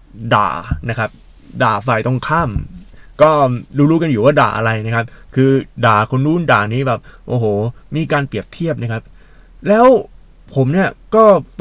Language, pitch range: Thai, 110-155 Hz